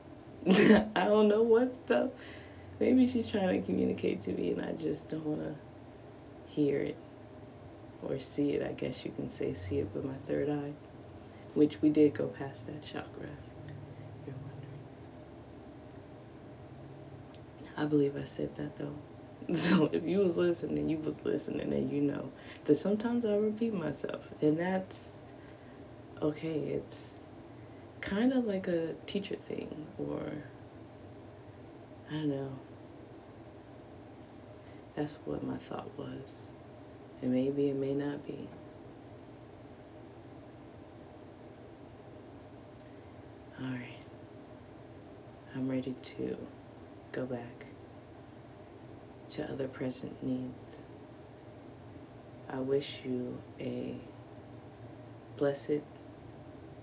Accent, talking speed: American, 110 wpm